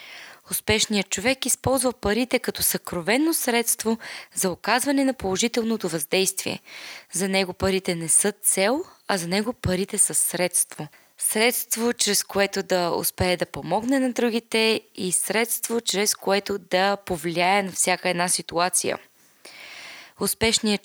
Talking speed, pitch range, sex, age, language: 125 wpm, 185-225 Hz, female, 20-39, Bulgarian